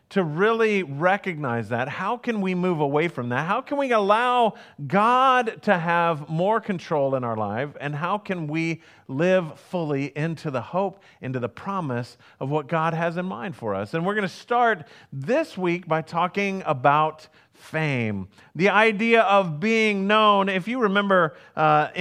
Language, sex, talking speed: English, male, 170 wpm